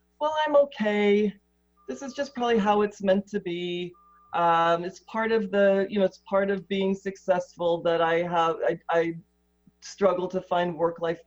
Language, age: English, 40-59